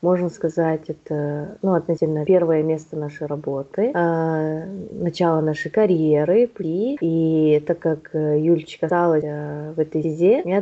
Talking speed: 135 wpm